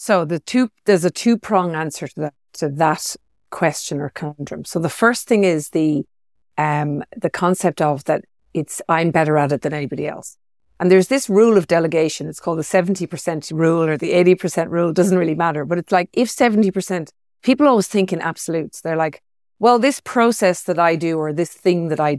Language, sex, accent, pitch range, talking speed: English, female, Irish, 155-195 Hz, 205 wpm